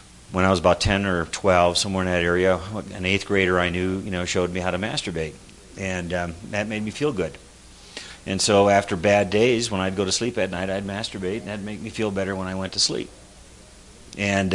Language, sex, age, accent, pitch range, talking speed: English, male, 40-59, American, 90-105 Hz, 235 wpm